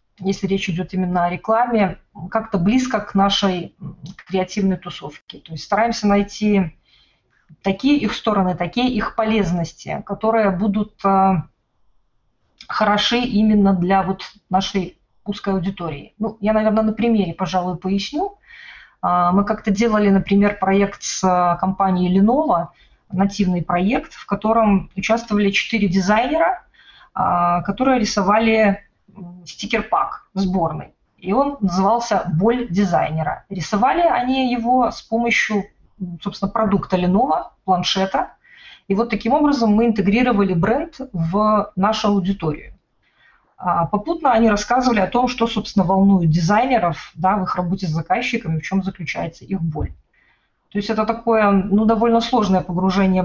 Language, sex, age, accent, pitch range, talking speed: Russian, female, 20-39, native, 185-225 Hz, 125 wpm